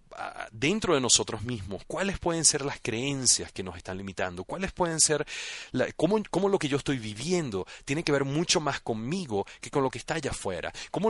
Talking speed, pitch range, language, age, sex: 205 wpm, 110-155 Hz, Spanish, 40-59, male